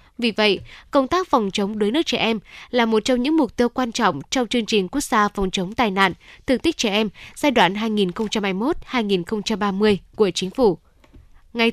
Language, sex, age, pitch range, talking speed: Vietnamese, female, 10-29, 200-245 Hz, 195 wpm